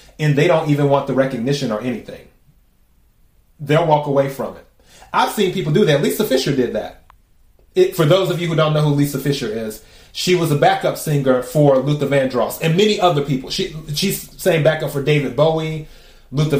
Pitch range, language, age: 140-180 Hz, English, 30-49